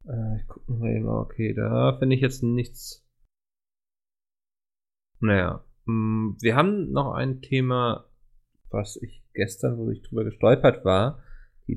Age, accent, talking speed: 20-39, German, 125 wpm